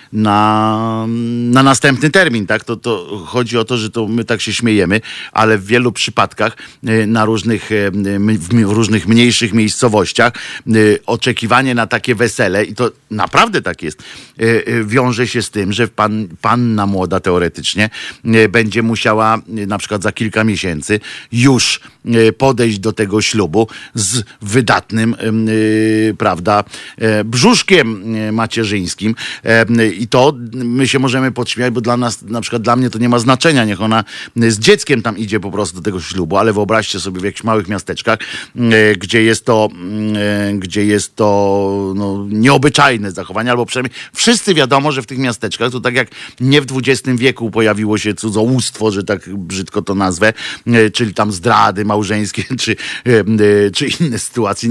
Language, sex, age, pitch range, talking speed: Polish, male, 50-69, 105-120 Hz, 150 wpm